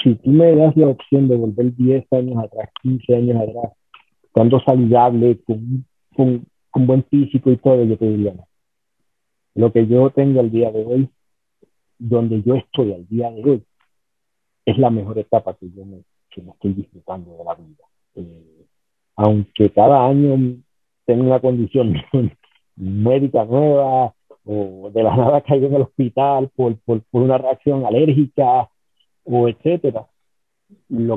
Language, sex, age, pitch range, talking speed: Spanish, male, 50-69, 110-135 Hz, 160 wpm